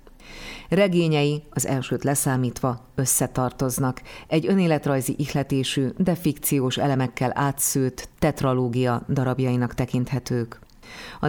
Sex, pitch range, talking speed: female, 125-145 Hz, 85 wpm